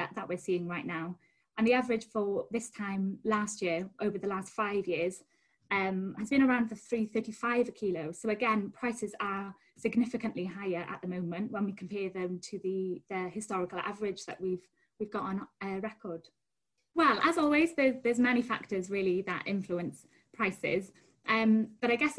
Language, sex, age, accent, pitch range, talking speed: English, female, 20-39, British, 185-225 Hz, 175 wpm